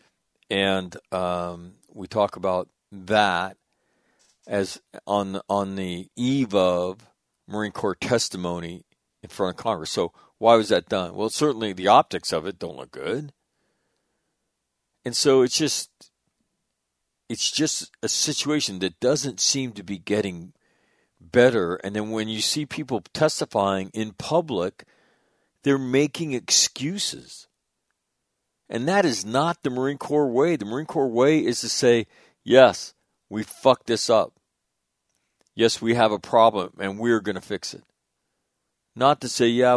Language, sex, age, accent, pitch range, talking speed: English, male, 50-69, American, 100-140 Hz, 145 wpm